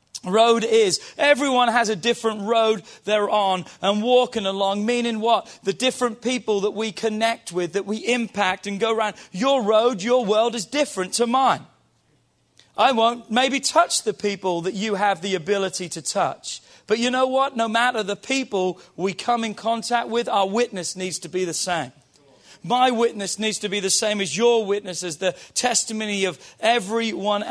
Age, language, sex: 40-59, English, male